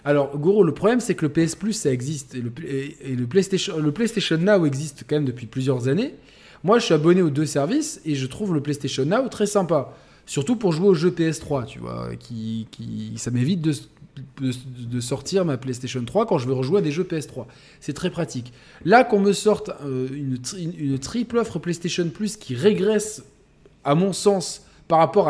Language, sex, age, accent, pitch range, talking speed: French, male, 20-39, French, 135-185 Hz, 210 wpm